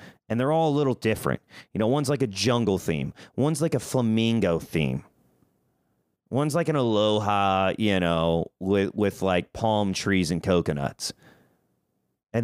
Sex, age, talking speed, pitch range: male, 30-49, 155 wpm, 95-140 Hz